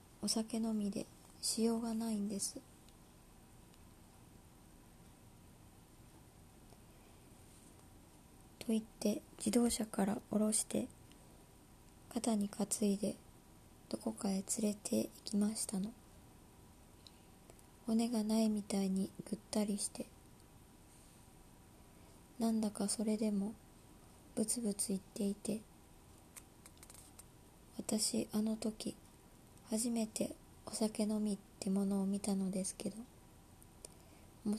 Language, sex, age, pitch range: Japanese, male, 20-39, 195-225 Hz